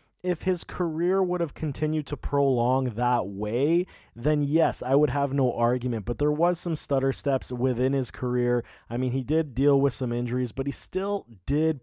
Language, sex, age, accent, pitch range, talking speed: English, male, 20-39, American, 120-150 Hz, 195 wpm